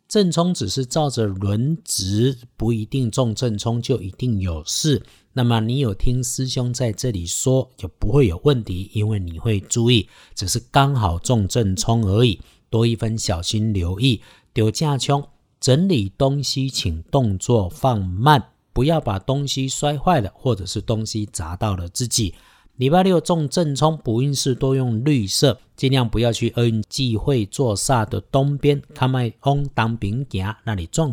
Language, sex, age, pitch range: Chinese, male, 50-69, 110-140 Hz